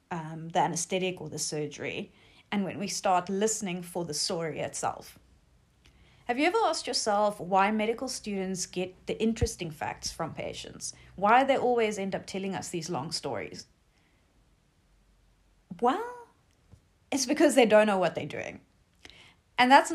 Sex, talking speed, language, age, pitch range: female, 150 wpm, English, 30-49, 165-220 Hz